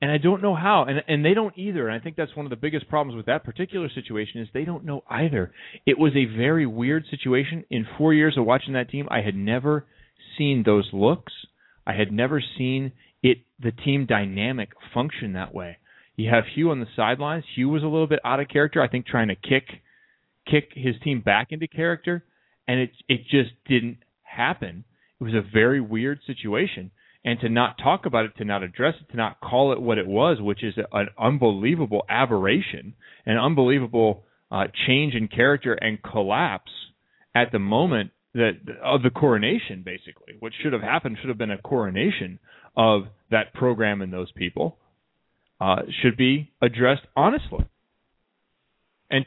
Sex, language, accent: male, English, American